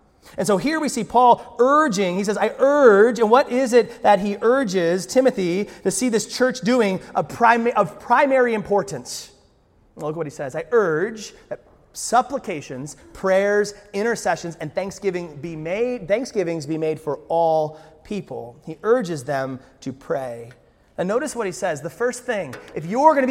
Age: 30-49